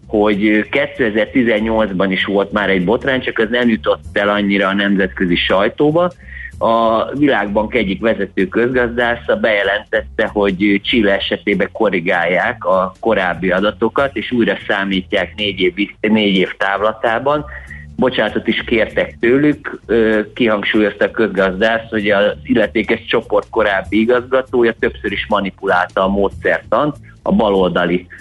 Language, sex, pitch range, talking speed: Hungarian, male, 95-120 Hz, 120 wpm